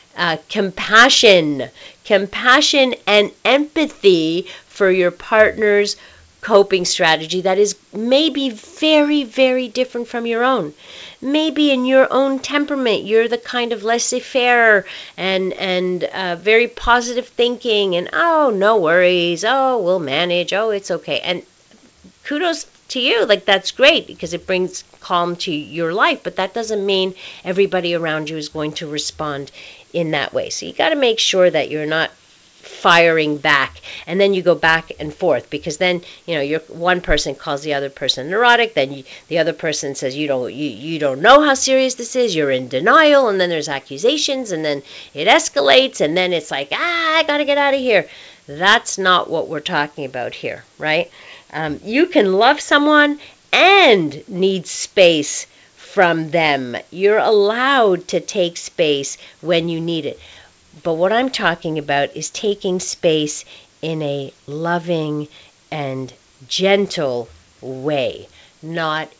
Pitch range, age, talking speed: 155-240 Hz, 40-59, 160 wpm